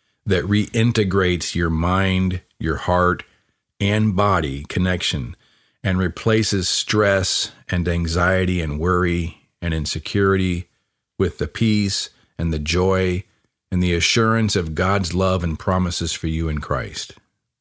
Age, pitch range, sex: 40-59, 80-100 Hz, male